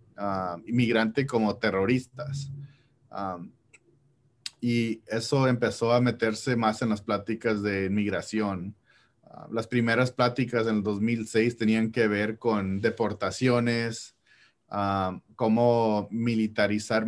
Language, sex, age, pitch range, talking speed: English, male, 30-49, 105-120 Hz, 110 wpm